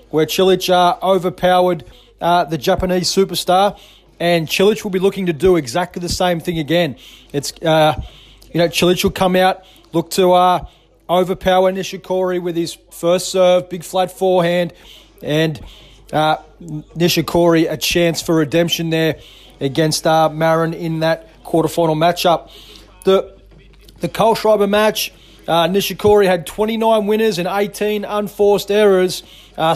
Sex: male